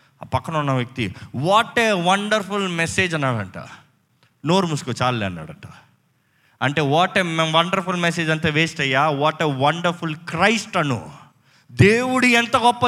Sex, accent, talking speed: male, native, 135 wpm